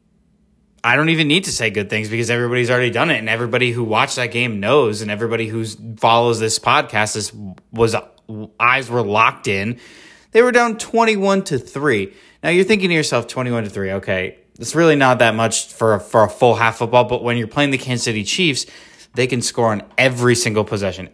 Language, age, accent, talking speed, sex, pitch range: English, 20-39, American, 205 wpm, male, 110-135 Hz